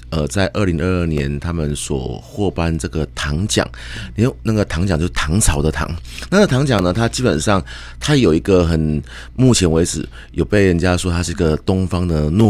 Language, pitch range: Chinese, 70-90 Hz